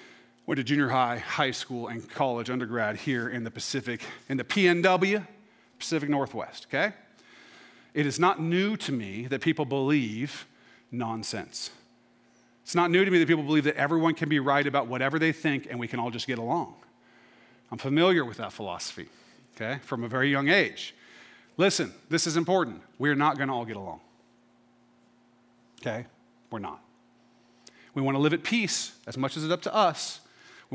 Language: English